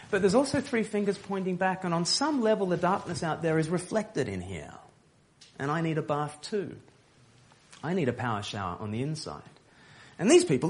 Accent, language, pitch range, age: Australian, English, 135-180 Hz, 30-49